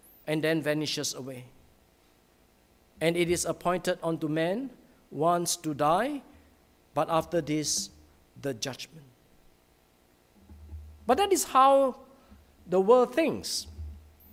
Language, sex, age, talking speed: English, male, 50-69, 105 wpm